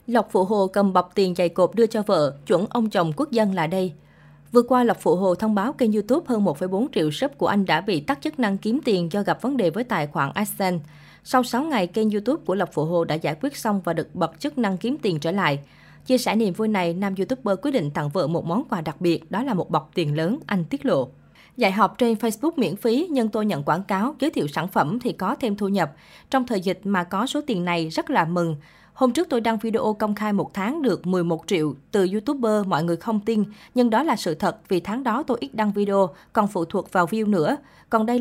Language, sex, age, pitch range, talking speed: Vietnamese, female, 20-39, 175-235 Hz, 260 wpm